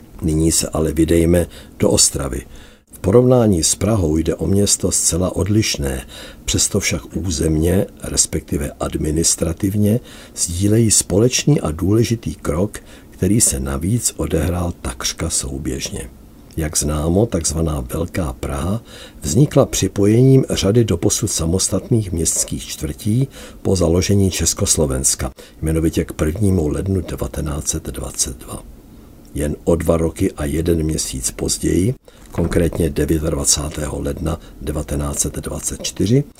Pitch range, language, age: 80-100 Hz, Czech, 60-79